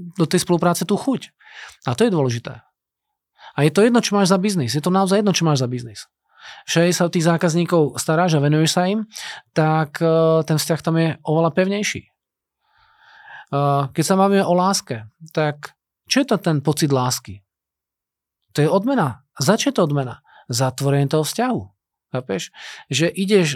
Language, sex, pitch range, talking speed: Slovak, male, 140-185 Hz, 175 wpm